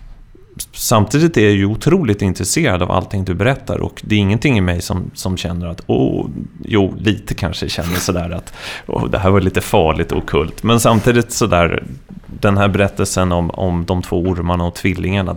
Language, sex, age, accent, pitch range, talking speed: Swedish, male, 30-49, native, 95-120 Hz, 190 wpm